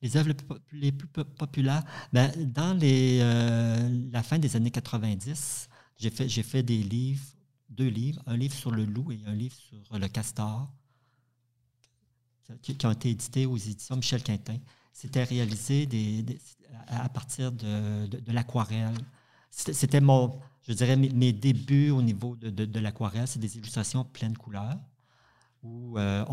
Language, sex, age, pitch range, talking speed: French, male, 50-69, 115-130 Hz, 165 wpm